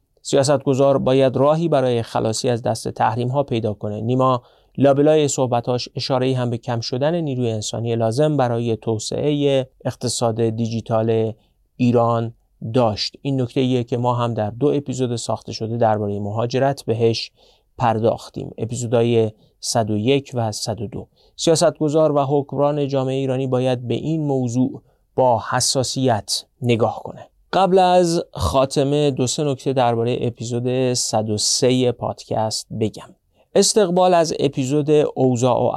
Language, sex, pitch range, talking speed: Persian, male, 115-140 Hz, 120 wpm